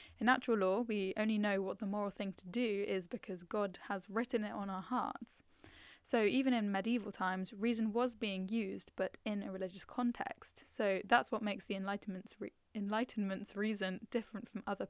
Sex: female